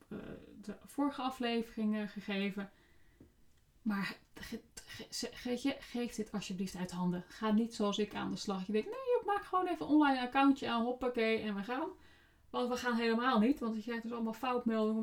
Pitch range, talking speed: 195-235 Hz, 180 wpm